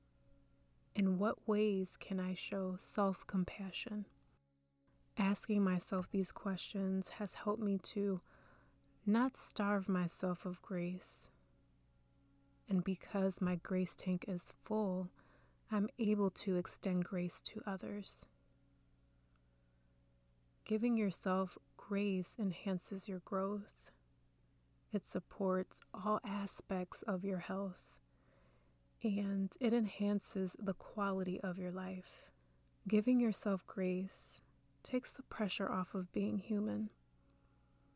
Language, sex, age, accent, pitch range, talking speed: English, female, 30-49, American, 170-200 Hz, 105 wpm